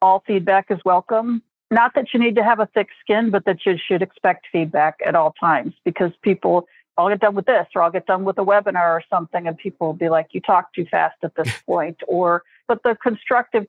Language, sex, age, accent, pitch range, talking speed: English, female, 50-69, American, 170-205 Hz, 235 wpm